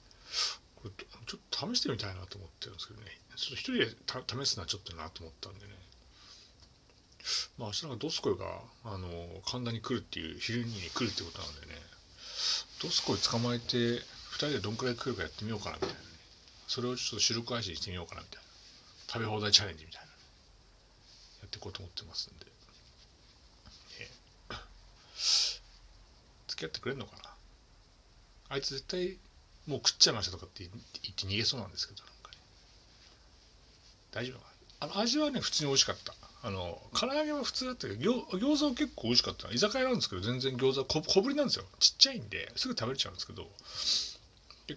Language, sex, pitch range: Japanese, male, 90-125 Hz